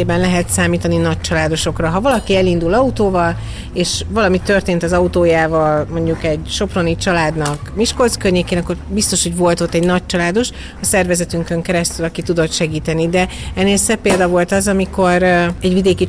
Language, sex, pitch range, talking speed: Hungarian, female, 170-190 Hz, 150 wpm